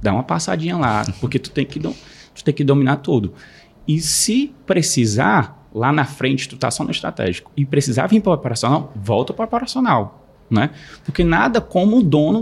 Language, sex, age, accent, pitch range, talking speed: Portuguese, male, 20-39, Brazilian, 125-170 Hz, 200 wpm